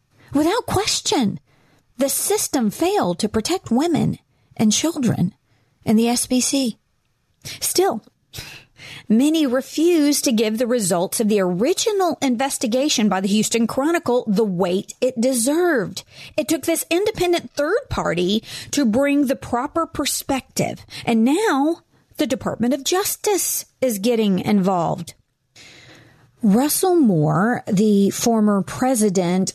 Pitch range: 200-285 Hz